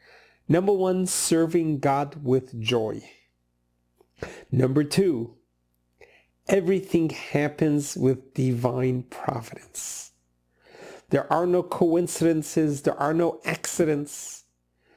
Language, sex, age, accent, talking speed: English, male, 50-69, American, 85 wpm